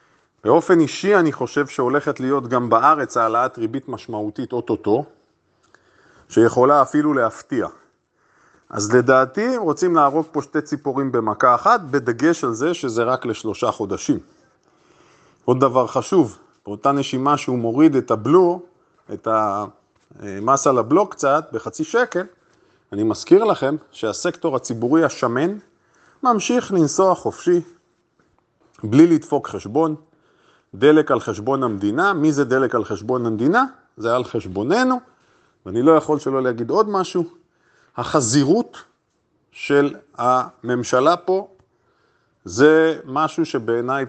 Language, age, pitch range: Hebrew, 30-49, 130-175 Hz